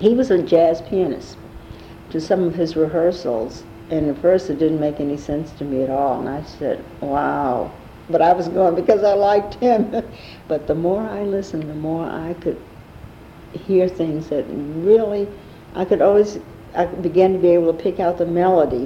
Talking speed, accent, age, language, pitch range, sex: 190 wpm, American, 60-79, English, 145-180 Hz, female